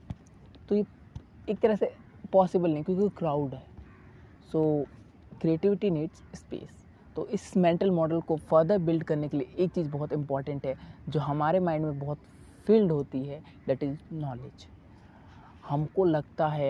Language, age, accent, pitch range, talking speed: Hindi, 20-39, native, 140-165 Hz, 175 wpm